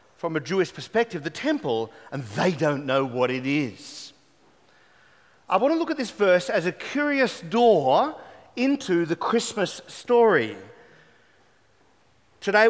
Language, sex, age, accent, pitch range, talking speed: English, male, 40-59, Australian, 160-235 Hz, 130 wpm